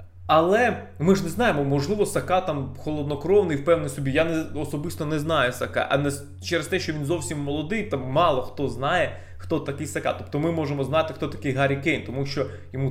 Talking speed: 200 wpm